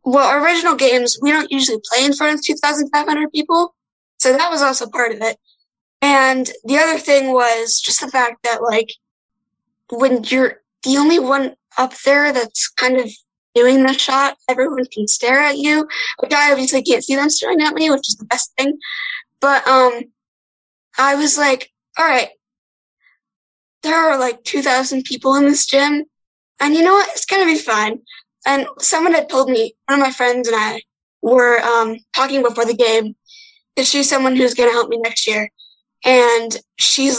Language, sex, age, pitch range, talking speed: English, female, 10-29, 235-285 Hz, 185 wpm